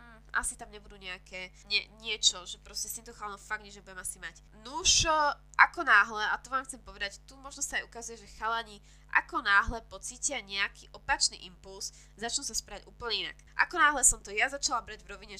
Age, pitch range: 20-39, 205-260 Hz